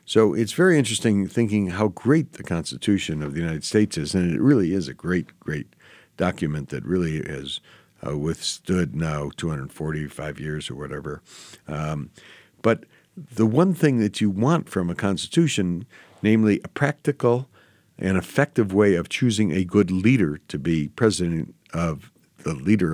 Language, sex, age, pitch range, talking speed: English, male, 60-79, 85-115 Hz, 155 wpm